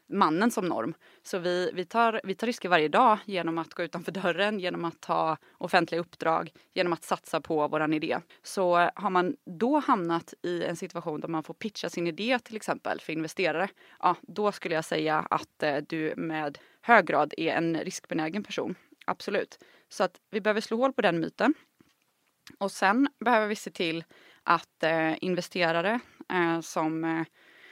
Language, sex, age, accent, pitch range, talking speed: English, female, 20-39, Swedish, 160-195 Hz, 165 wpm